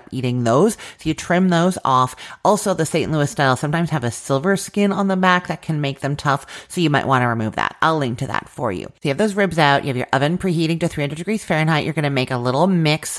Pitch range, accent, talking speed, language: 130-180 Hz, American, 275 wpm, English